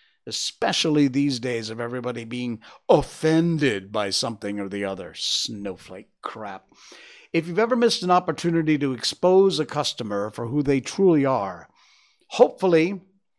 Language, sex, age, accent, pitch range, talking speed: English, male, 60-79, American, 125-170 Hz, 135 wpm